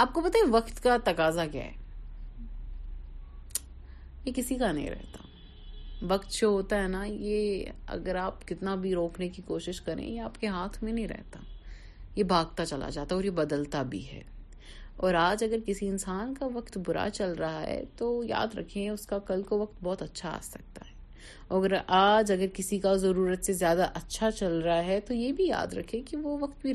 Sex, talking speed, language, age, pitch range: female, 195 wpm, Urdu, 30-49, 170-235 Hz